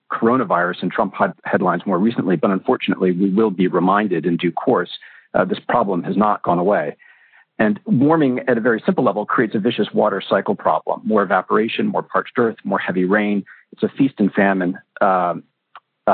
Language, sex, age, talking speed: English, male, 50-69, 180 wpm